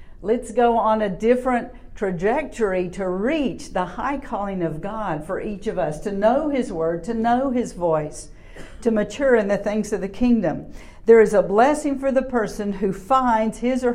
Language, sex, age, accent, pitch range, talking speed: English, female, 50-69, American, 185-240 Hz, 190 wpm